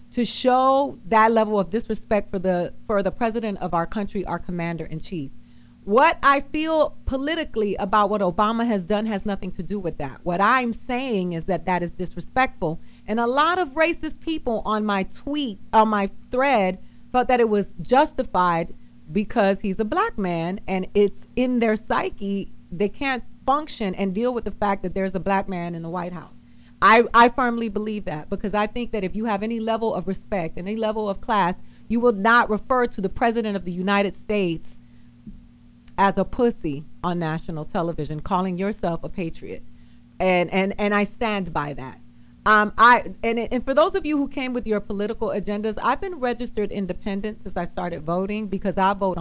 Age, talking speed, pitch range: 40-59, 190 wpm, 175-230 Hz